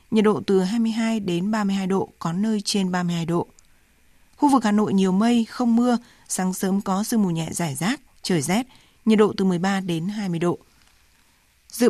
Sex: female